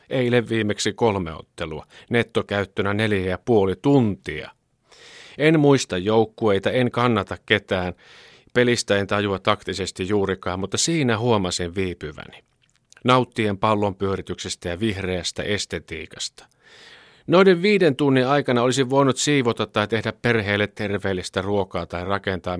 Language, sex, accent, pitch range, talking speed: Finnish, male, native, 95-125 Hz, 115 wpm